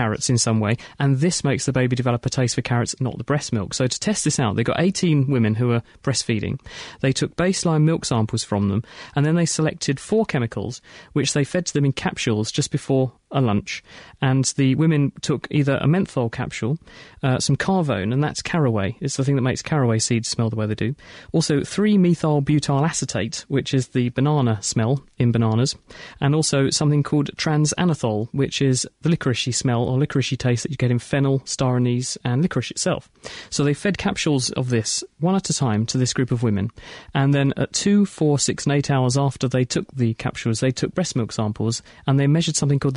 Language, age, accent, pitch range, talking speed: English, 30-49, British, 120-150 Hz, 215 wpm